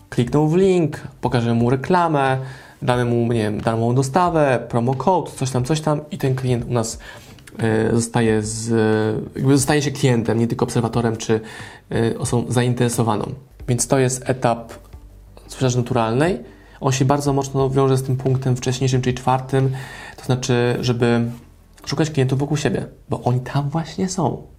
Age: 20-39